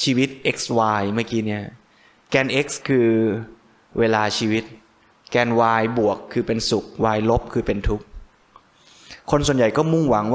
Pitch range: 105-125 Hz